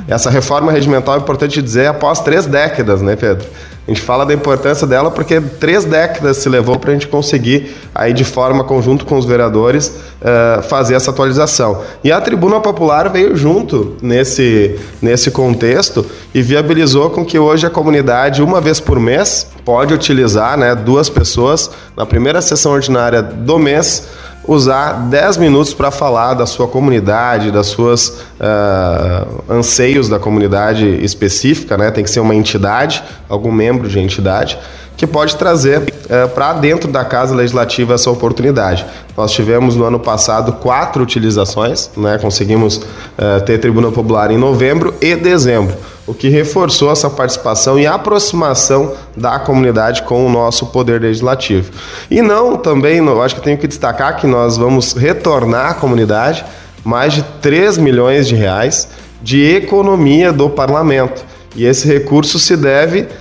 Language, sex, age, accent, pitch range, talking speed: Portuguese, male, 20-39, Brazilian, 115-145 Hz, 155 wpm